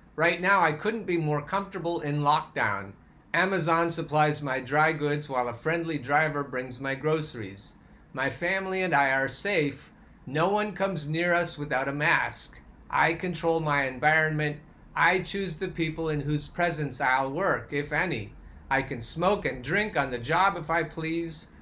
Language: English